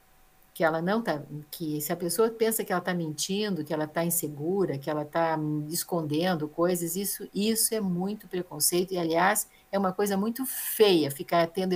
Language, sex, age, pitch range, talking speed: Portuguese, female, 50-69, 165-200 Hz, 185 wpm